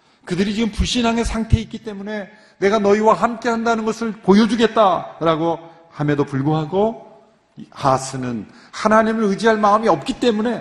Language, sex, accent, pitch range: Korean, male, native, 145-220 Hz